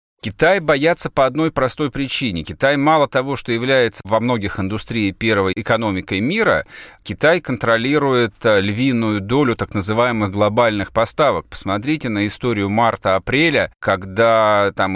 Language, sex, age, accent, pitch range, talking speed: Russian, male, 40-59, native, 100-130 Hz, 125 wpm